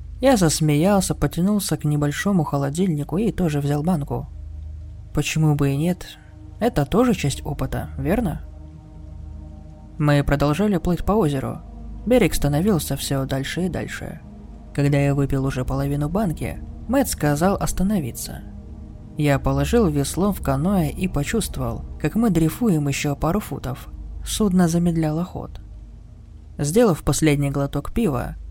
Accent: native